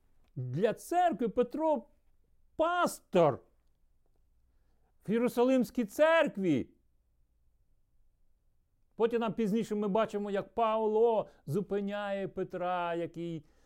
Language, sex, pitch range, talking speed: Ukrainian, male, 120-185 Hz, 75 wpm